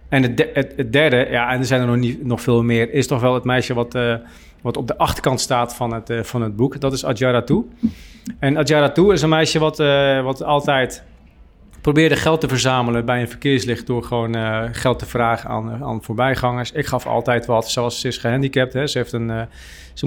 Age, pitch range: 40-59, 115-135 Hz